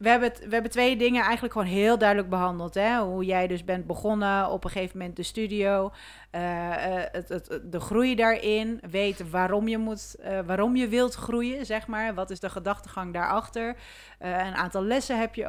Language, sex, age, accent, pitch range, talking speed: Dutch, female, 40-59, Dutch, 180-215 Hz, 200 wpm